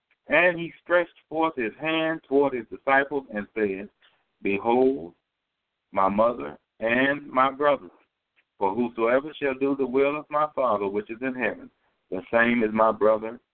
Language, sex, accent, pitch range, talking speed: English, male, American, 120-165 Hz, 155 wpm